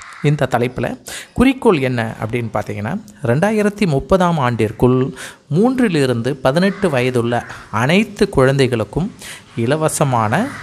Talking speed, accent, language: 85 wpm, native, Tamil